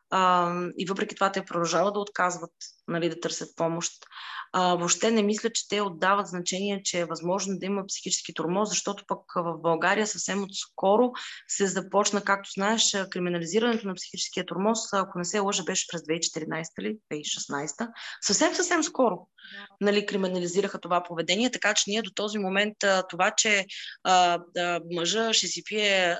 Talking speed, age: 165 wpm, 20-39